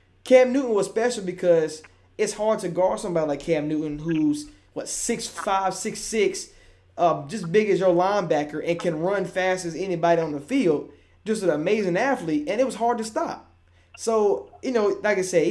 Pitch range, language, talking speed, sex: 165-205 Hz, English, 195 wpm, male